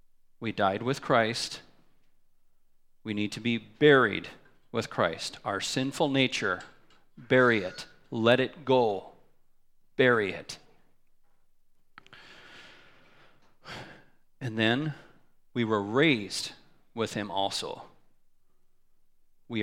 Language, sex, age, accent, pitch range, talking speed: English, male, 40-59, American, 110-130 Hz, 90 wpm